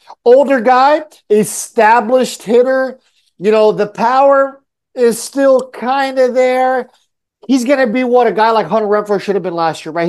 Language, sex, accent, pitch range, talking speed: English, male, American, 205-250 Hz, 165 wpm